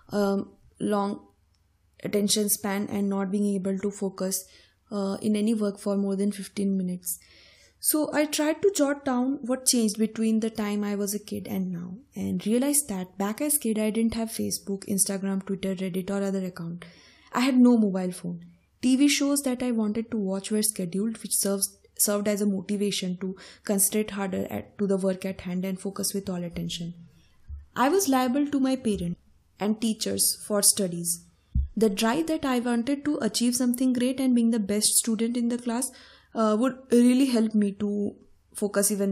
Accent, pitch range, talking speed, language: Indian, 190-230 Hz, 185 wpm, English